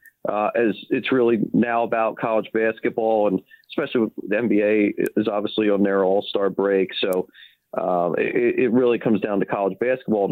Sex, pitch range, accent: male, 100-120 Hz, American